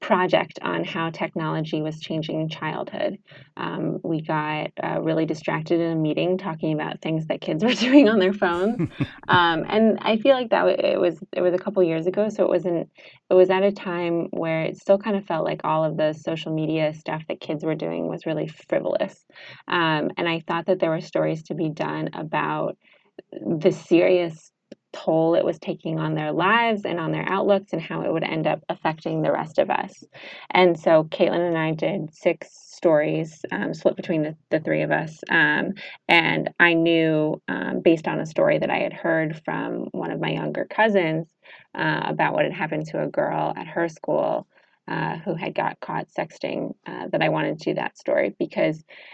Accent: American